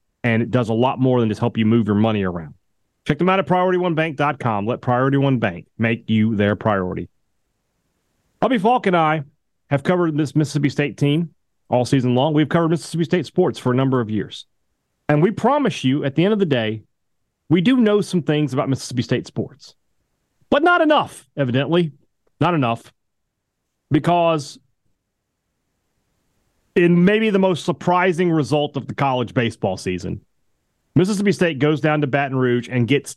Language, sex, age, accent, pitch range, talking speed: English, male, 30-49, American, 120-165 Hz, 175 wpm